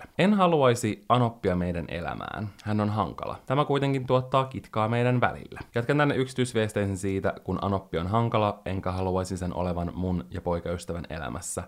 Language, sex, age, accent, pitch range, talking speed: Finnish, male, 20-39, native, 90-110 Hz, 155 wpm